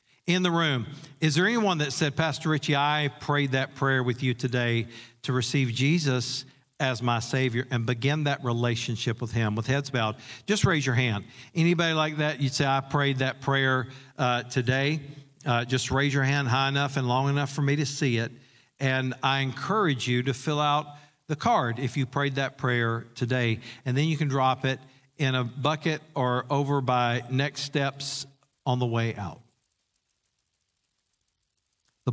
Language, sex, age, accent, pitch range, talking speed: English, male, 50-69, American, 120-140 Hz, 180 wpm